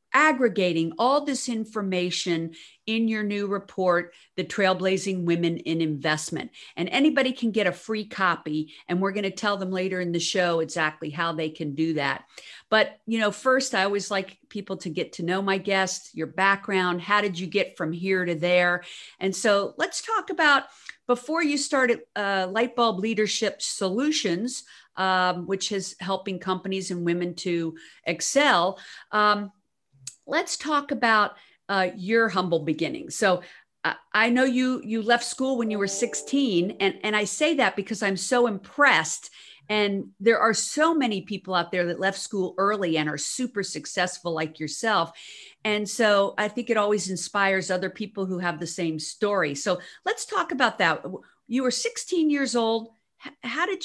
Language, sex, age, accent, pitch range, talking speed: English, female, 50-69, American, 180-235 Hz, 175 wpm